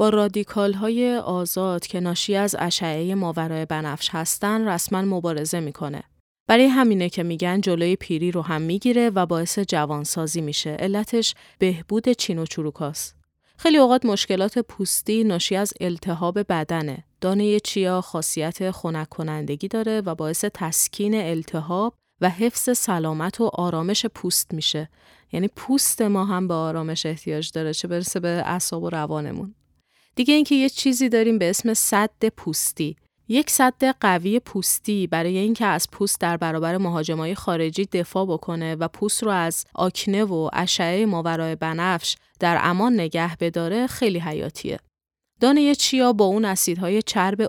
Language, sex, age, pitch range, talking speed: Persian, female, 30-49, 165-215 Hz, 145 wpm